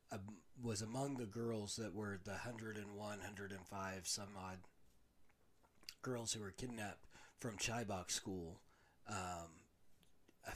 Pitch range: 95-115 Hz